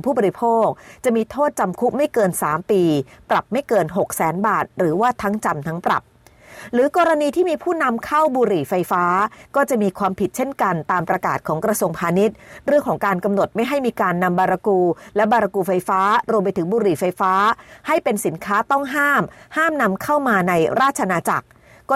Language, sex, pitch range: Thai, female, 185-245 Hz